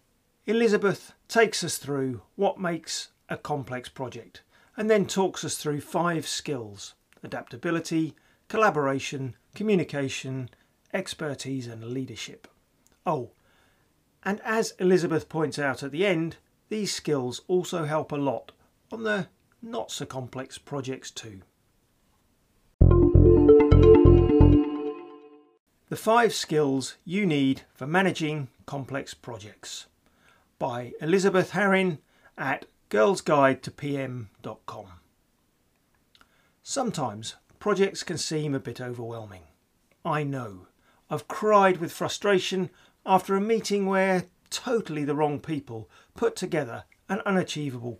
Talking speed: 100 wpm